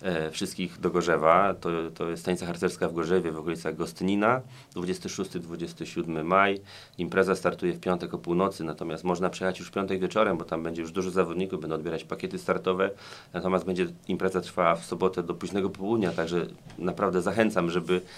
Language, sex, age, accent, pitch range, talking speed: Polish, male, 30-49, native, 85-95 Hz, 170 wpm